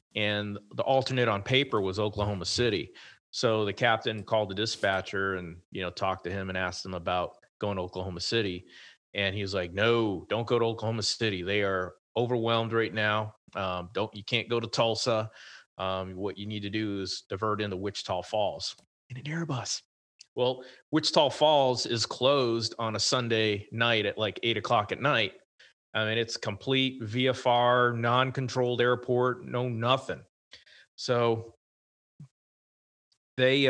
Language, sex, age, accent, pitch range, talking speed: English, male, 30-49, American, 100-120 Hz, 165 wpm